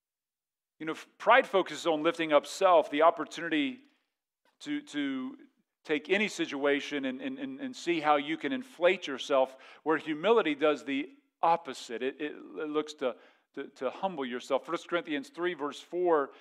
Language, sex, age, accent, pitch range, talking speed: English, male, 40-59, American, 145-195 Hz, 160 wpm